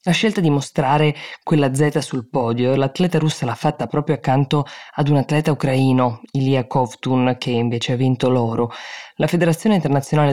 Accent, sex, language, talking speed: native, female, Italian, 165 wpm